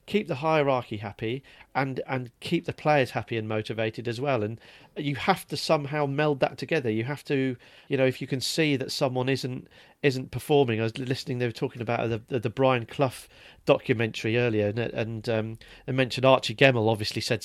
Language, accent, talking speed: English, British, 205 wpm